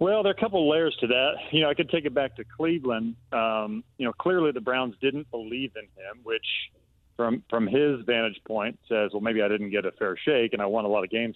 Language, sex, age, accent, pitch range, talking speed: English, male, 40-59, American, 105-125 Hz, 265 wpm